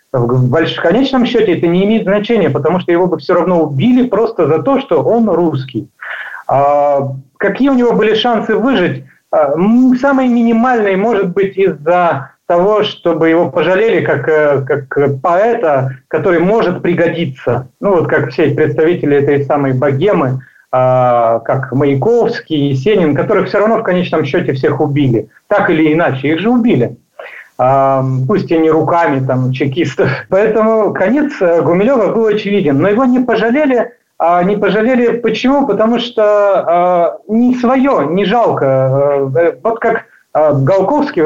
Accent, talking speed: native, 135 wpm